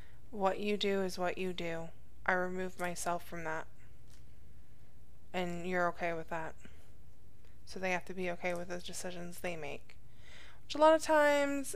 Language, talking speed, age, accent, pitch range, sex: English, 170 wpm, 20-39, American, 180-205 Hz, female